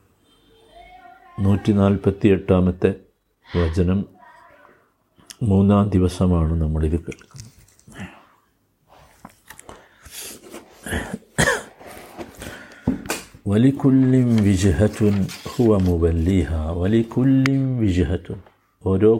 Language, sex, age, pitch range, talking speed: Malayalam, male, 60-79, 90-110 Hz, 40 wpm